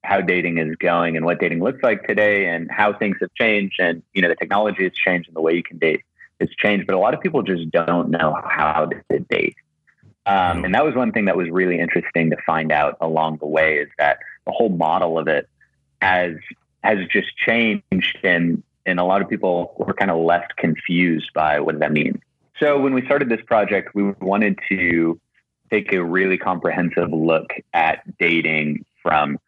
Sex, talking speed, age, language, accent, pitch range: male, 205 wpm, 30-49, English, American, 80-100 Hz